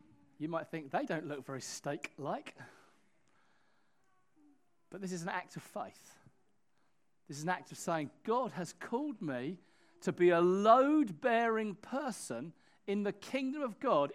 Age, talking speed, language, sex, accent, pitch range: 40-59, 155 wpm, English, male, British, 165-245 Hz